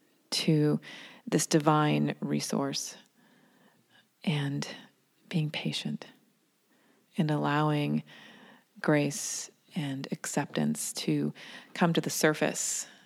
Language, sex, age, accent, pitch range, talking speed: English, female, 30-49, American, 140-200 Hz, 80 wpm